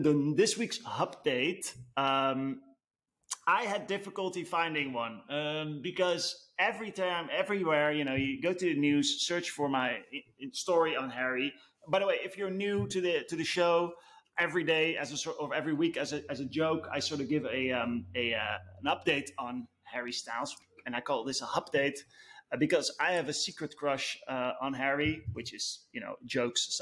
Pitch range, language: 140-180 Hz, English